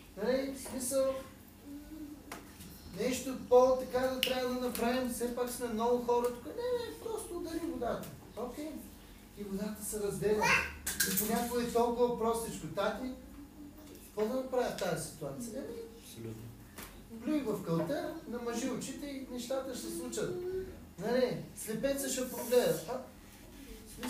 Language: Bulgarian